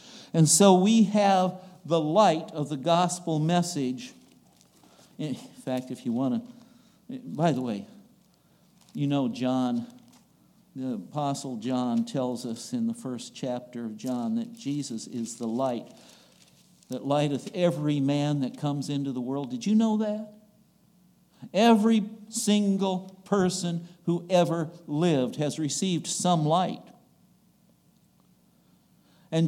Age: 60-79